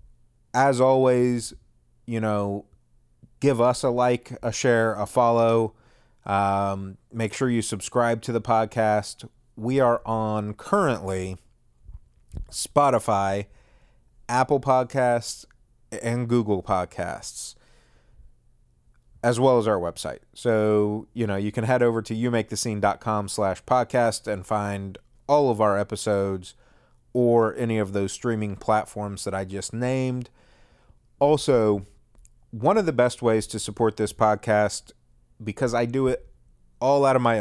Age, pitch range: 30-49, 105-120 Hz